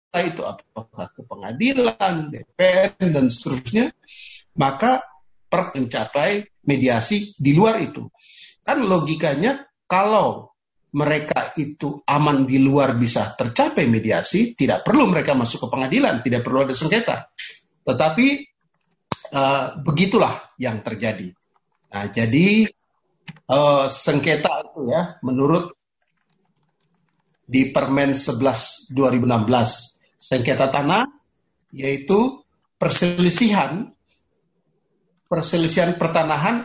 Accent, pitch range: native, 135-180 Hz